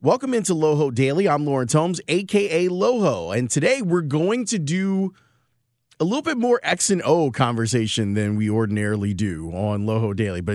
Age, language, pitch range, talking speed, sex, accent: 30-49, English, 115-155 Hz, 175 wpm, male, American